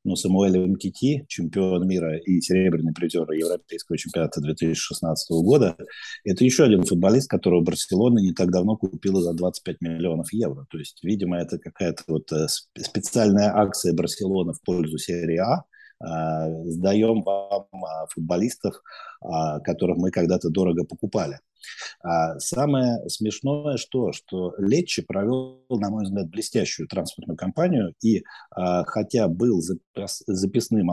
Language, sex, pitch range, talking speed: Russian, male, 85-115 Hz, 125 wpm